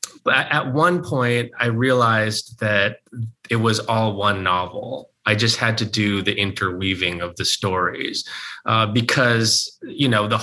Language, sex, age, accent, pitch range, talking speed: English, male, 20-39, American, 100-125 Hz, 155 wpm